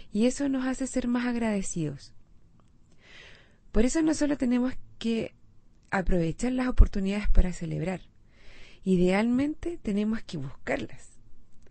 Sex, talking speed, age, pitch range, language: female, 115 wpm, 30-49, 175-265 Hz, Spanish